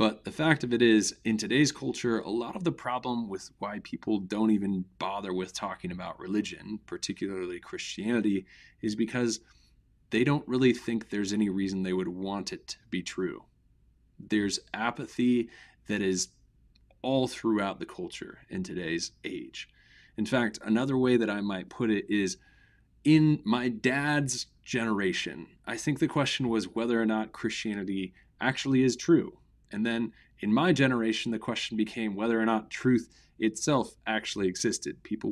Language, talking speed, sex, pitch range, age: English, 160 wpm, male, 100-125 Hz, 30-49